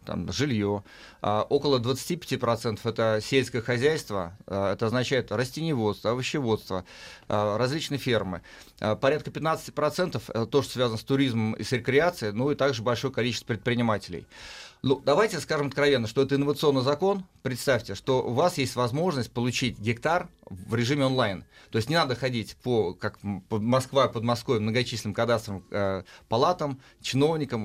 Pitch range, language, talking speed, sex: 110-140 Hz, Russian, 135 wpm, male